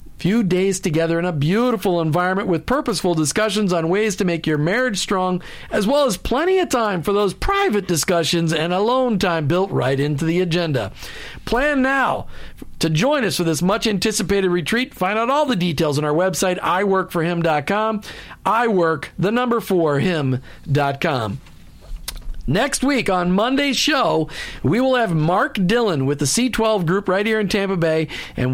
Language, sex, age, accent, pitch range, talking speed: English, male, 50-69, American, 160-220 Hz, 165 wpm